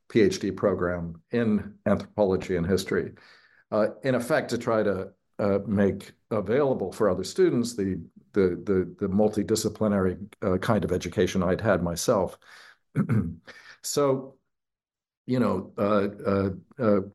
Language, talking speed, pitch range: English, 120 wpm, 95-110 Hz